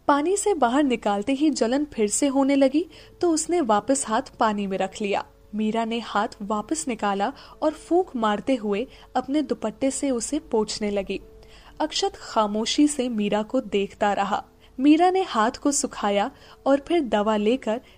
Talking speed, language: 165 wpm, Hindi